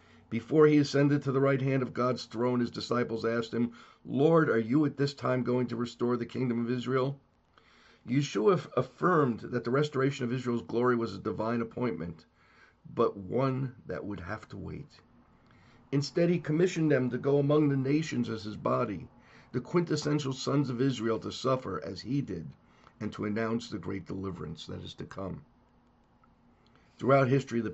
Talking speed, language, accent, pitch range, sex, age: 175 wpm, English, American, 105-130 Hz, male, 50-69